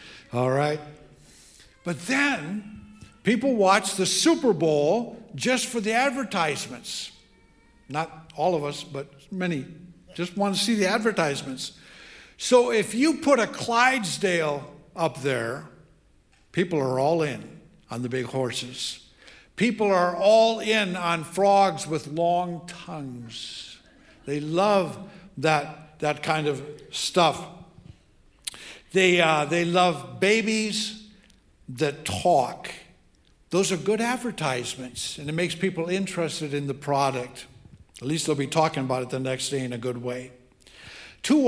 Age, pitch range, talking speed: 60-79, 145-200 Hz, 130 wpm